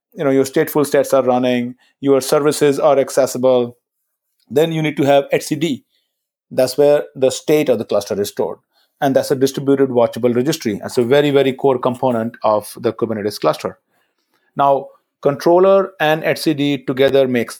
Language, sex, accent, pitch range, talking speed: English, male, Indian, 130-160 Hz, 165 wpm